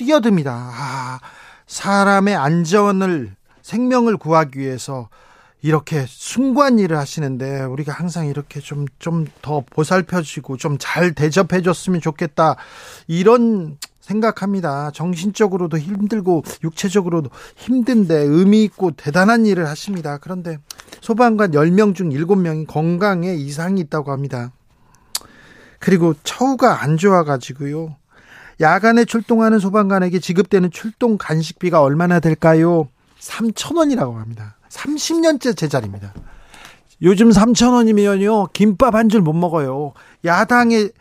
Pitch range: 150-215 Hz